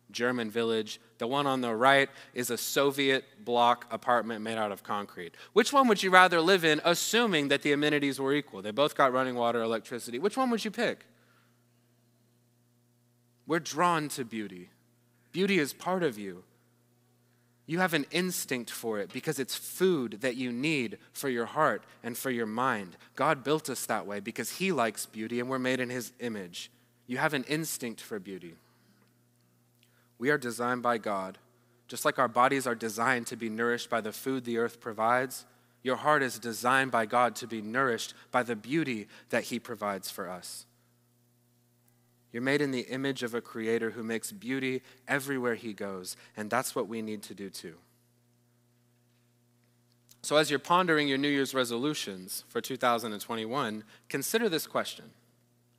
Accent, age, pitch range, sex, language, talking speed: American, 20-39, 115-135 Hz, male, English, 175 wpm